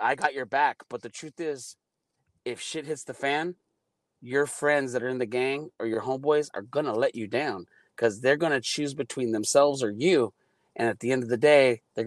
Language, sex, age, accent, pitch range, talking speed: English, male, 30-49, American, 120-150 Hz, 230 wpm